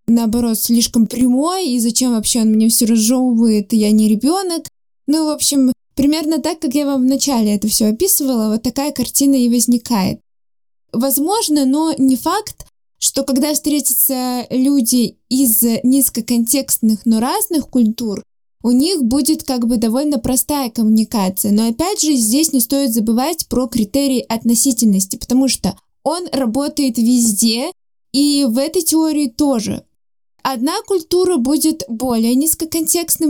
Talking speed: 140 wpm